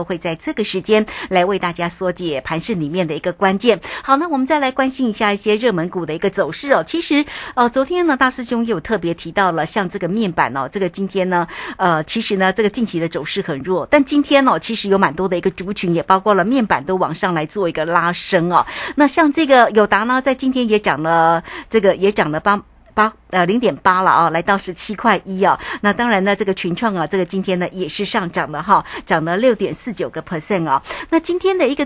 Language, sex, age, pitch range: Chinese, female, 50-69, 180-255 Hz